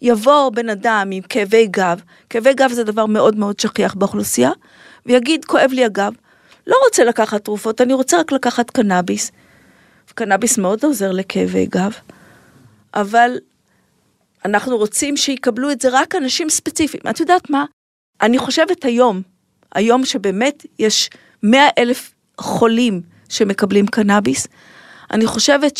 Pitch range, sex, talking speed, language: 210-270 Hz, female, 135 wpm, Hebrew